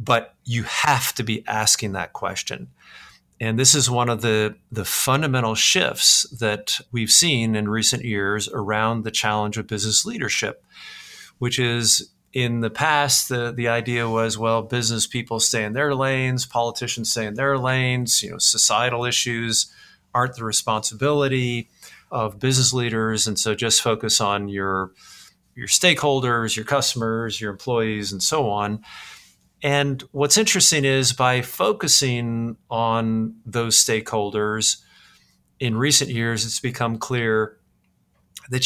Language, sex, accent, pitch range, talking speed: English, male, American, 105-125 Hz, 140 wpm